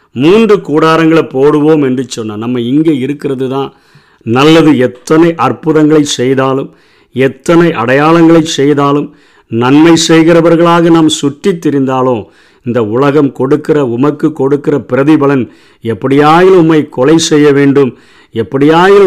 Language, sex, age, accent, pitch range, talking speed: Tamil, male, 50-69, native, 130-155 Hz, 105 wpm